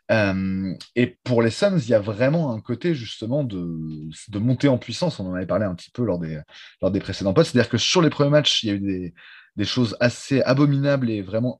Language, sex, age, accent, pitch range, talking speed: French, male, 20-39, French, 100-135 Hz, 240 wpm